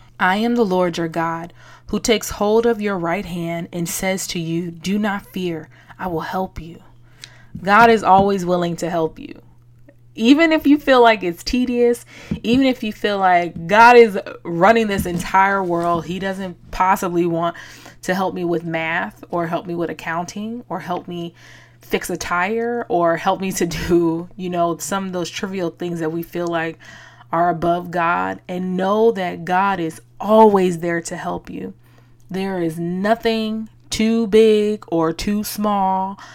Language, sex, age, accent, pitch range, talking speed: English, female, 20-39, American, 170-205 Hz, 175 wpm